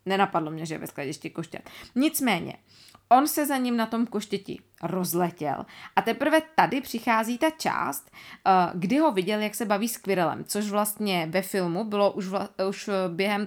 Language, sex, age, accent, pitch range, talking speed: Czech, female, 20-39, native, 175-235 Hz, 165 wpm